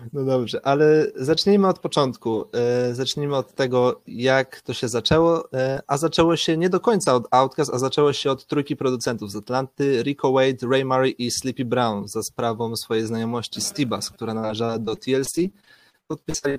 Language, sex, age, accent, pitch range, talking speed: Polish, male, 30-49, native, 115-145 Hz, 165 wpm